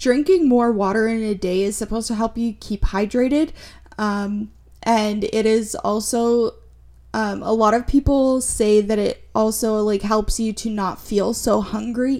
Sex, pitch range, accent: female, 190-240 Hz, American